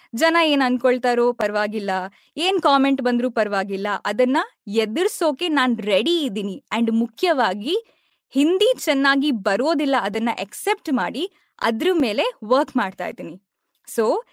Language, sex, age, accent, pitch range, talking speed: Kannada, female, 20-39, native, 225-320 Hz, 115 wpm